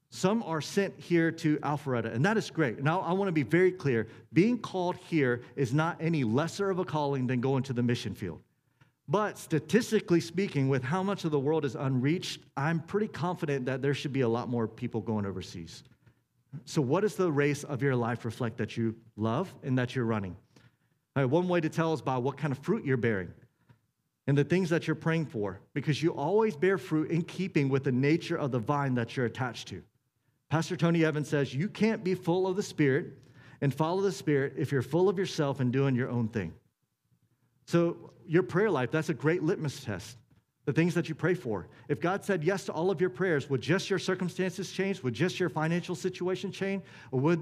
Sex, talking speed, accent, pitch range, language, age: male, 215 wpm, American, 130-175 Hz, English, 40-59